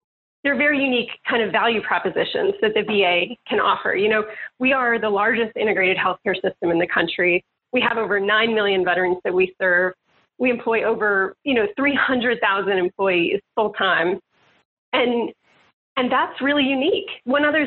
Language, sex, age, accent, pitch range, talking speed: English, female, 30-49, American, 210-255 Hz, 175 wpm